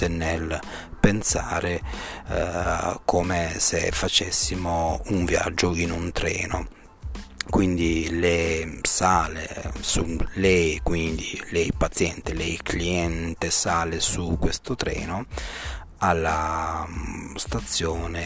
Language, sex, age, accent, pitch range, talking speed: Italian, male, 30-49, native, 85-90 Hz, 90 wpm